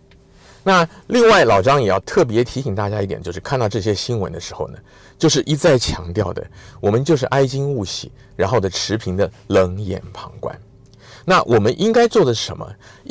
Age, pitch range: 50-69, 100-165 Hz